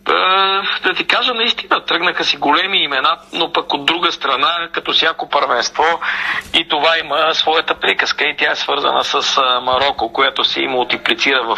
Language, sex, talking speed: Bulgarian, male, 160 wpm